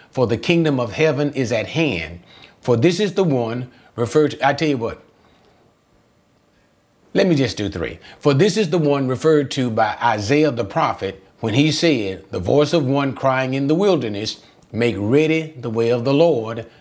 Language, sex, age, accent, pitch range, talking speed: English, male, 30-49, American, 110-145 Hz, 190 wpm